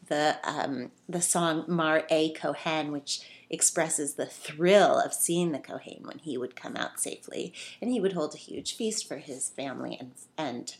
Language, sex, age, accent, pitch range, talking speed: English, female, 30-49, American, 155-195 Hz, 185 wpm